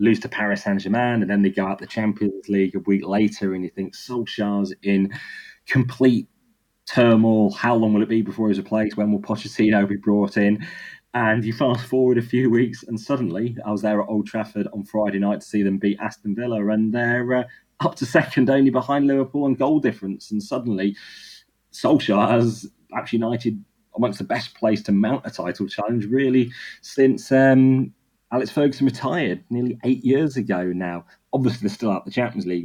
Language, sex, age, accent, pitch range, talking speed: English, male, 30-49, British, 100-120 Hz, 195 wpm